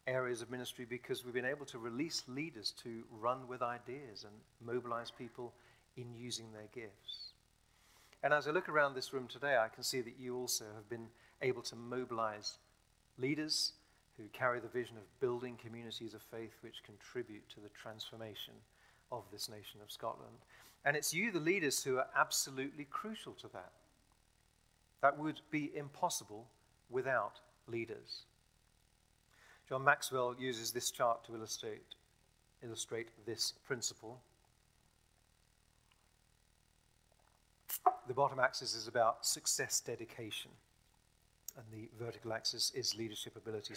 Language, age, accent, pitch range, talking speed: English, 40-59, British, 115-135 Hz, 140 wpm